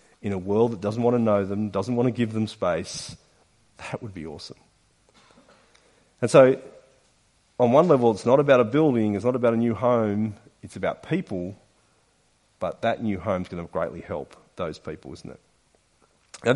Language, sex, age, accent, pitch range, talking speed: English, male, 40-59, Australian, 105-140 Hz, 185 wpm